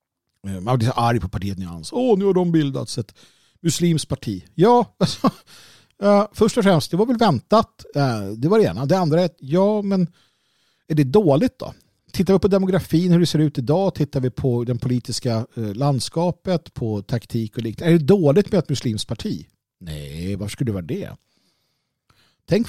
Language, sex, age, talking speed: Swedish, male, 50-69, 195 wpm